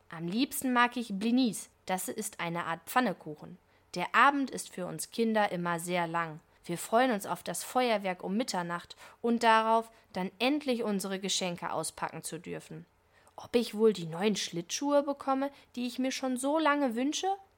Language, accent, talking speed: German, German, 170 wpm